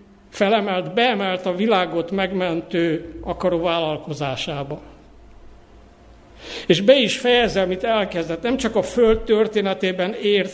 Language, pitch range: Hungarian, 170-215 Hz